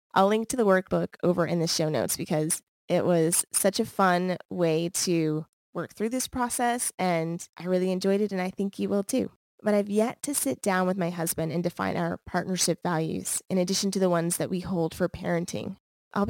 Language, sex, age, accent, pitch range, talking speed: English, female, 20-39, American, 175-205 Hz, 215 wpm